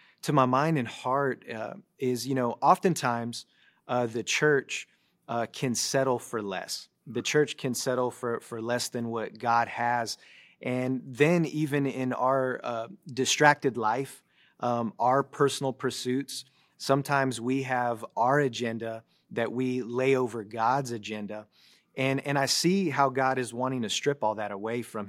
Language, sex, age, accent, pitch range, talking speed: English, male, 30-49, American, 115-135 Hz, 160 wpm